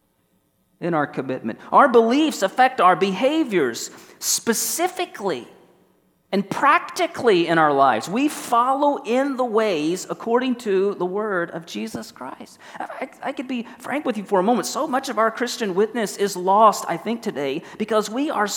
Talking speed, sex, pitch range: 160 wpm, male, 190-280 Hz